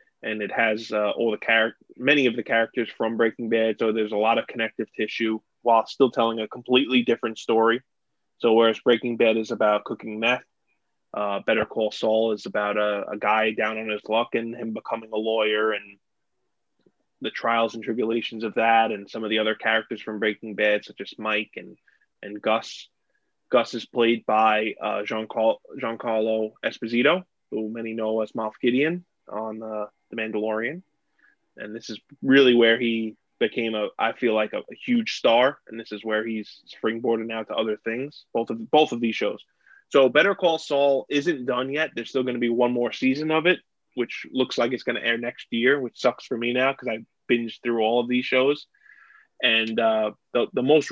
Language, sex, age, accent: English, male, 20-39, American